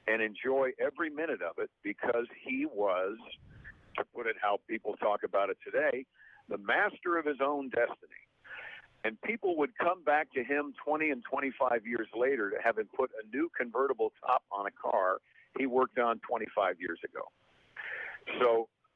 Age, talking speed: 50-69, 170 wpm